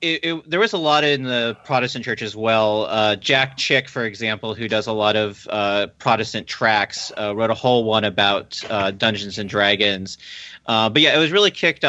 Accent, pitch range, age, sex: American, 105-130 Hz, 30-49, male